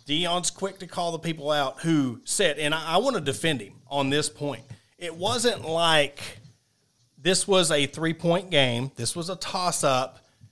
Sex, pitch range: male, 135-175 Hz